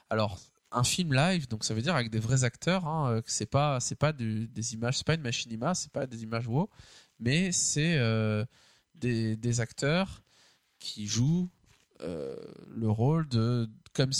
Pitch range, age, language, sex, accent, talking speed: 110-145 Hz, 20-39, French, male, French, 185 wpm